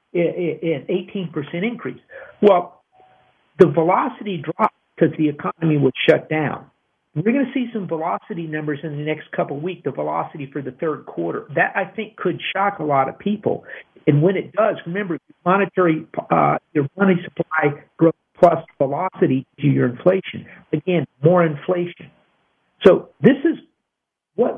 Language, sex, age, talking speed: English, male, 50-69, 160 wpm